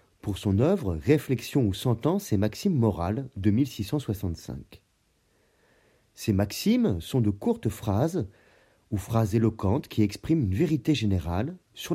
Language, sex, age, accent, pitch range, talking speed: French, male, 40-59, French, 100-140 Hz, 130 wpm